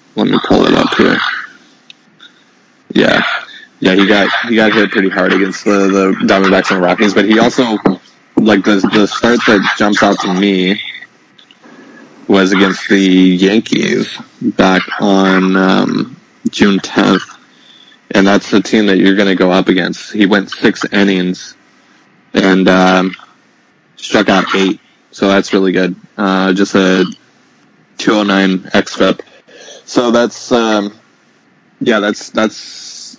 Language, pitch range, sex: English, 95-100 Hz, male